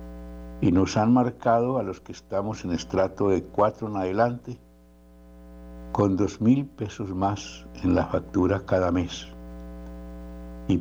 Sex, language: male, Spanish